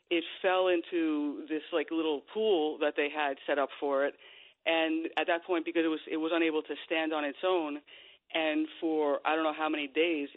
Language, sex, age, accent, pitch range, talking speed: English, female, 40-59, American, 150-185 Hz, 215 wpm